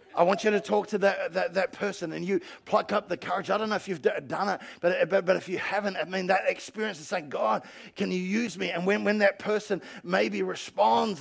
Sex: male